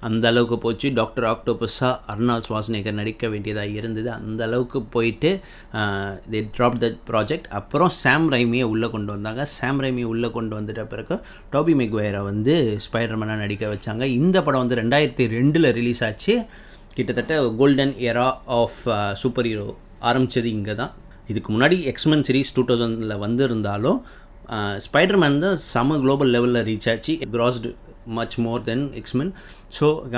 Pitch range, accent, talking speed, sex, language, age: 110-135 Hz, native, 135 wpm, male, Tamil, 30-49